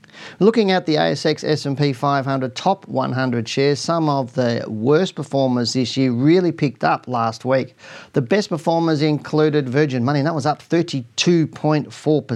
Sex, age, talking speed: male, 40-59, 155 wpm